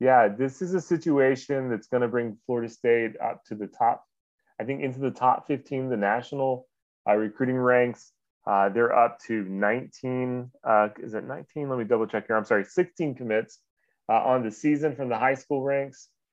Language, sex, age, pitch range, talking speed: English, male, 30-49, 105-135 Hz, 195 wpm